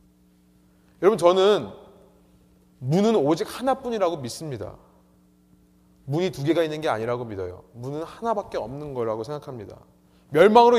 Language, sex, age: Korean, male, 30-49